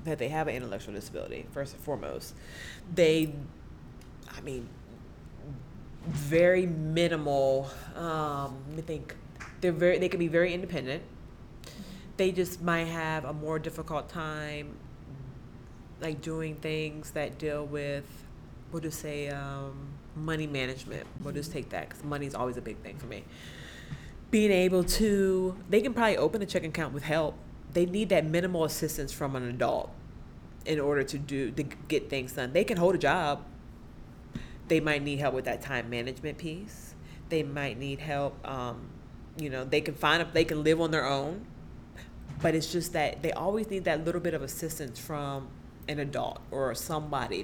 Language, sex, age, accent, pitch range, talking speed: English, female, 20-39, American, 140-165 Hz, 170 wpm